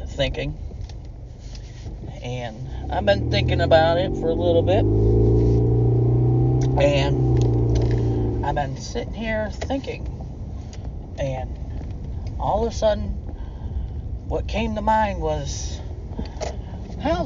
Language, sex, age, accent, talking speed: English, male, 40-59, American, 95 wpm